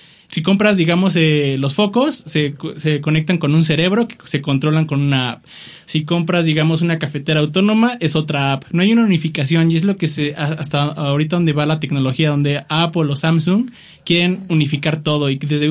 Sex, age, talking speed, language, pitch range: male, 20-39, 200 wpm, English, 145-180 Hz